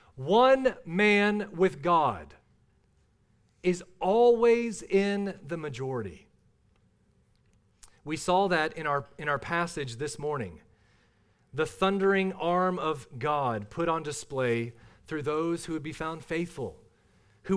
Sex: male